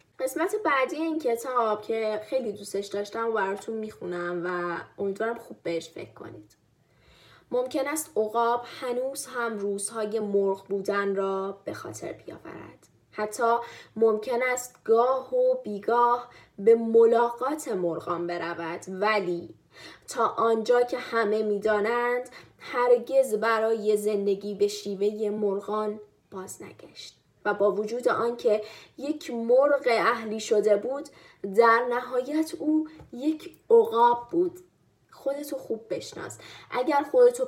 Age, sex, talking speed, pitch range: 10-29, female, 115 wpm, 205-275 Hz